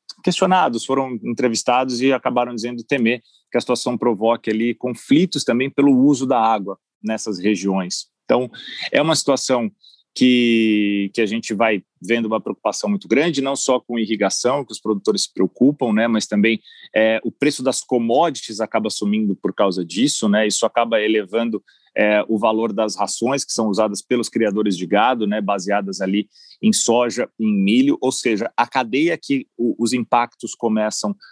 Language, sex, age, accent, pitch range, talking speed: Portuguese, male, 30-49, Brazilian, 105-125 Hz, 165 wpm